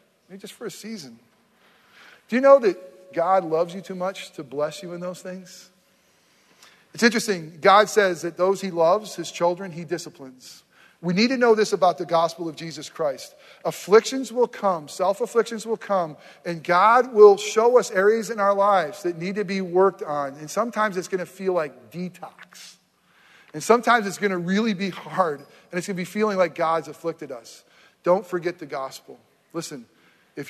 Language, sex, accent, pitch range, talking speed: English, male, American, 170-230 Hz, 190 wpm